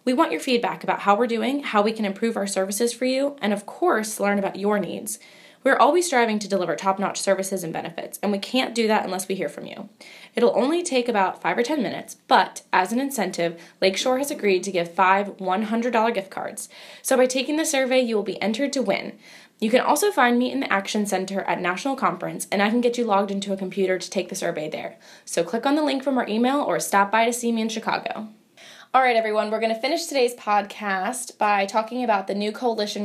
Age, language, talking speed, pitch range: 20-39, English, 240 wpm, 190-245 Hz